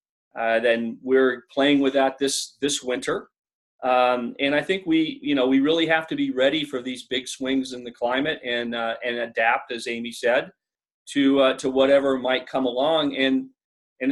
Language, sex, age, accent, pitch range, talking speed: English, male, 40-59, American, 120-135 Hz, 190 wpm